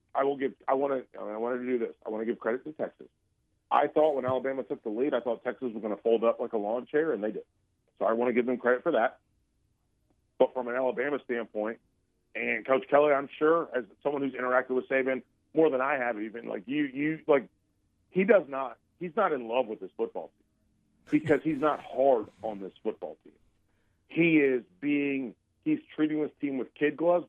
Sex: male